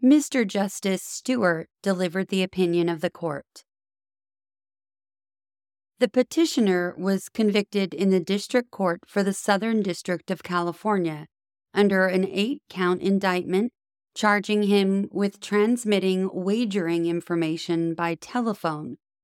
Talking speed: 110 wpm